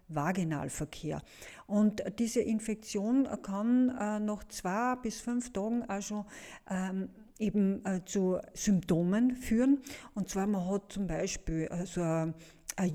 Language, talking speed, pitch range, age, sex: German, 110 wpm, 175-215 Hz, 50-69, female